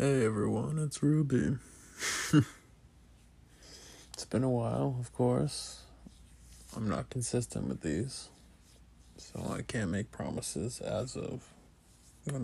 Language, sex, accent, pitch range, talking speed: English, male, American, 80-120 Hz, 110 wpm